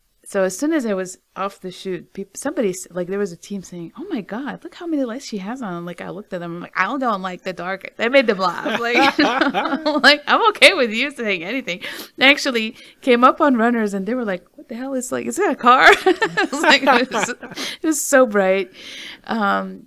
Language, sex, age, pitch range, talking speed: English, female, 30-49, 175-245 Hz, 250 wpm